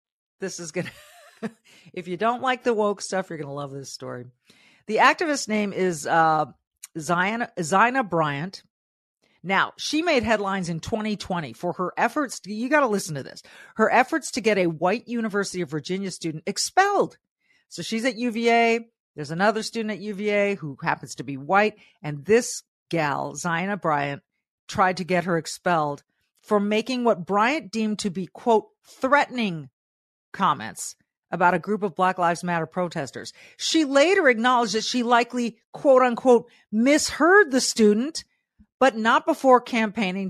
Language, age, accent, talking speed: English, 40-59, American, 160 wpm